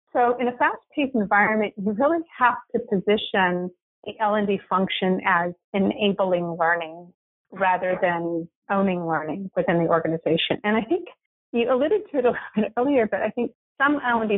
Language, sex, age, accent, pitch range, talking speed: English, female, 30-49, American, 190-235 Hz, 165 wpm